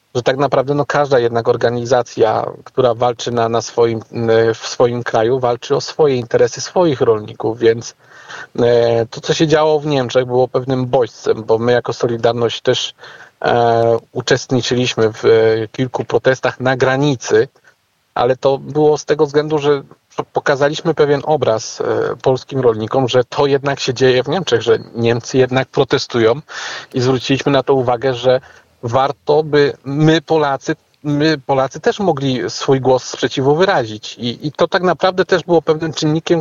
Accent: native